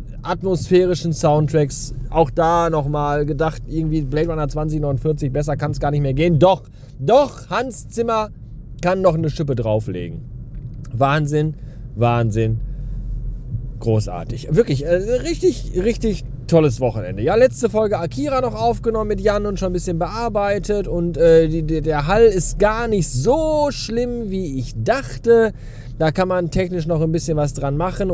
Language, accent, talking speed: German, German, 150 wpm